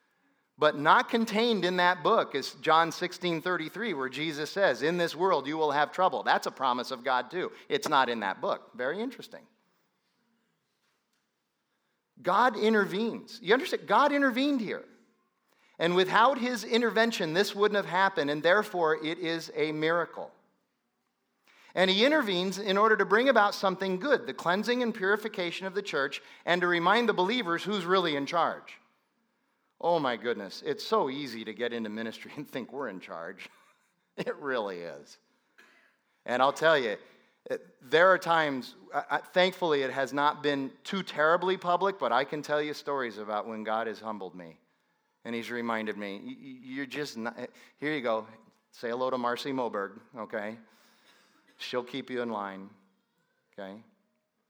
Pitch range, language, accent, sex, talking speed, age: 135-210 Hz, English, American, male, 165 wpm, 40-59